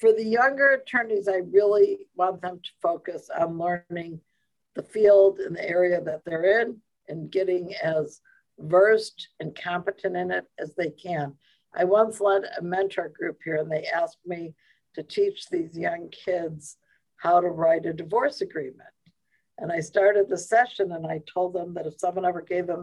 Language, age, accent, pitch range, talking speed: English, 60-79, American, 175-215 Hz, 180 wpm